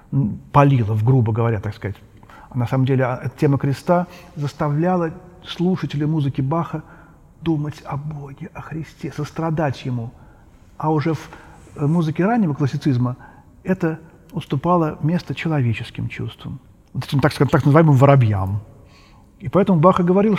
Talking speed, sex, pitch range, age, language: 130 wpm, male, 140-185 Hz, 40-59, Russian